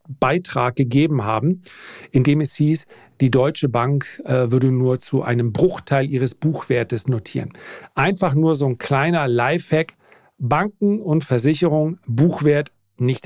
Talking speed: 125 wpm